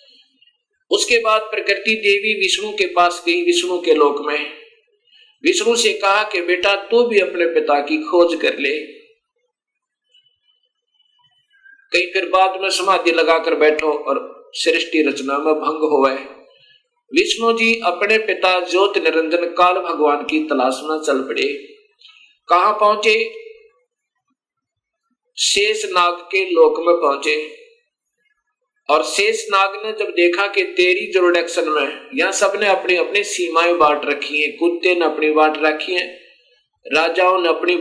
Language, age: Hindi, 50-69